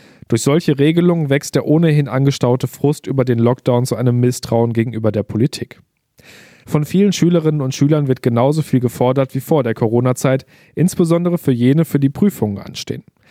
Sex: male